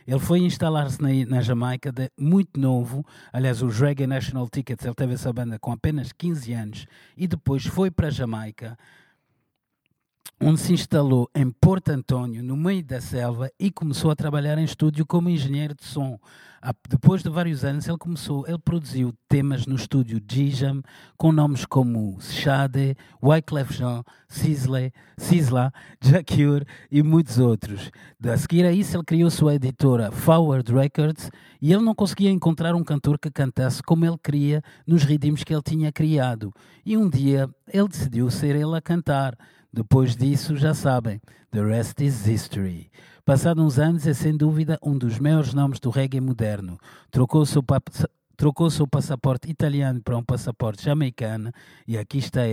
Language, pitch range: Portuguese, 125-155 Hz